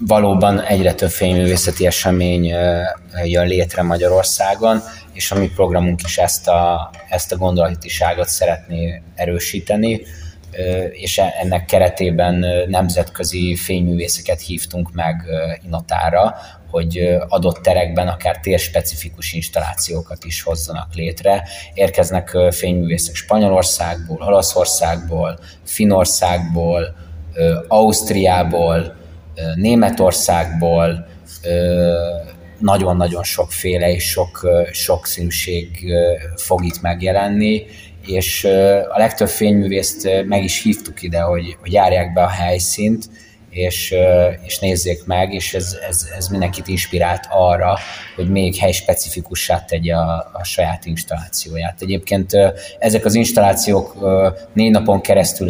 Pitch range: 85-95 Hz